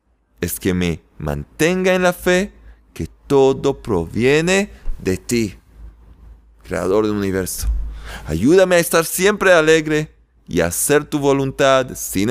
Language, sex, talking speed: Spanish, male, 125 wpm